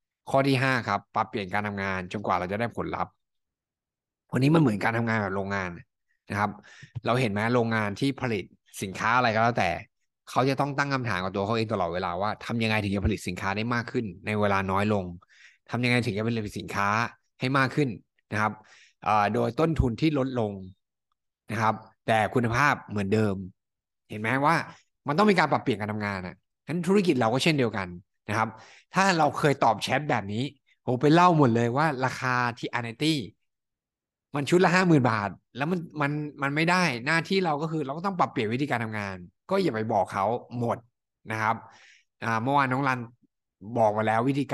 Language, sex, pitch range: Thai, male, 105-140 Hz